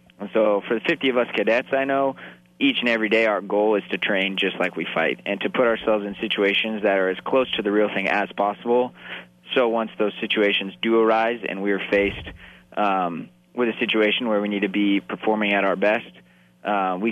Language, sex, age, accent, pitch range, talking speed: English, male, 20-39, American, 95-105 Hz, 215 wpm